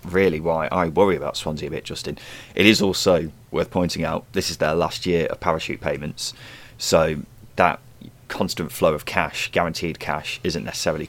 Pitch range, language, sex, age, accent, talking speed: 95-120 Hz, English, male, 20-39, British, 180 wpm